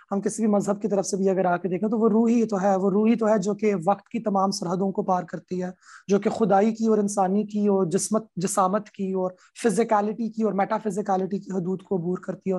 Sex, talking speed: male, 255 wpm